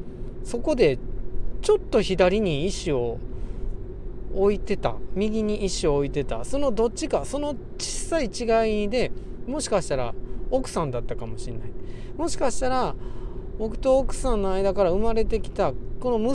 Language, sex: Japanese, male